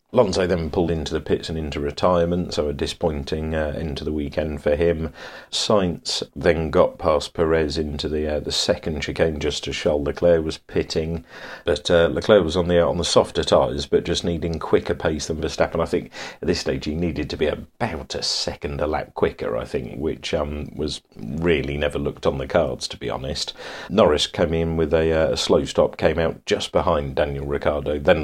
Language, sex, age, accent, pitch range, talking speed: English, male, 40-59, British, 75-85 Hz, 205 wpm